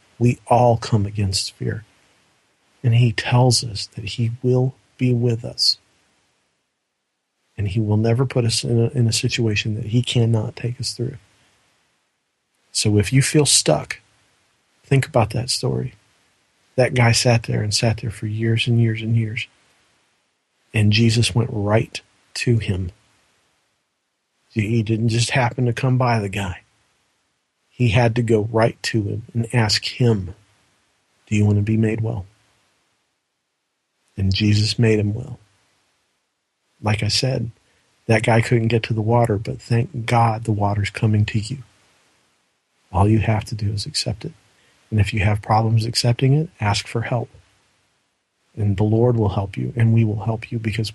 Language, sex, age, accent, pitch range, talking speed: English, male, 40-59, American, 105-120 Hz, 165 wpm